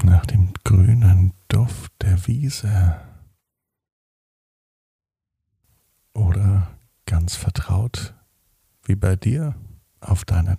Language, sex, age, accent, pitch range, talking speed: German, male, 50-69, German, 95-110 Hz, 80 wpm